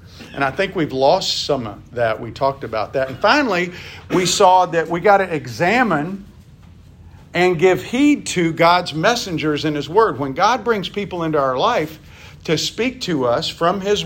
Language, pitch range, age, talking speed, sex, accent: English, 130-195 Hz, 50-69, 185 wpm, male, American